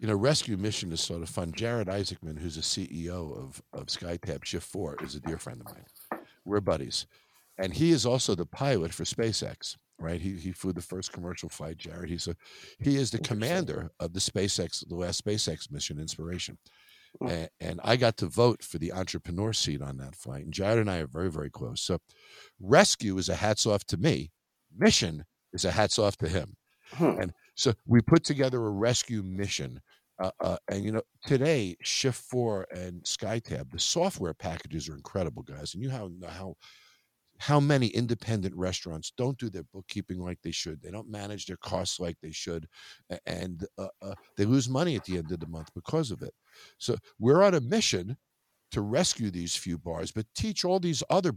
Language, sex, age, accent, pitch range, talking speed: English, male, 50-69, American, 85-120 Hz, 195 wpm